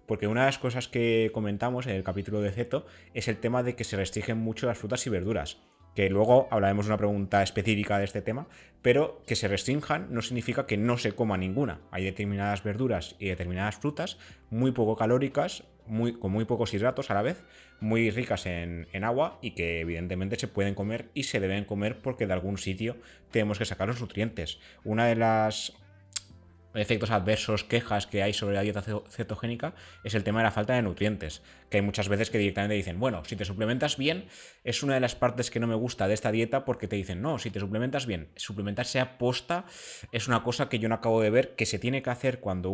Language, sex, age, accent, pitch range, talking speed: Spanish, male, 20-39, Spanish, 100-120 Hz, 220 wpm